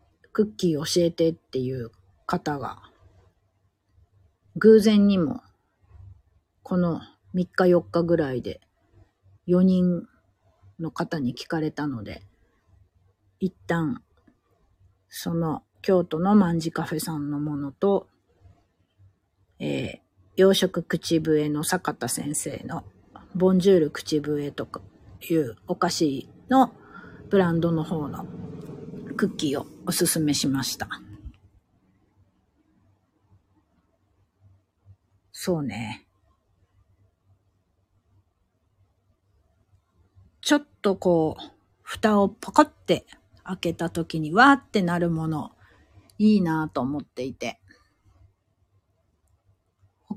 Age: 40-59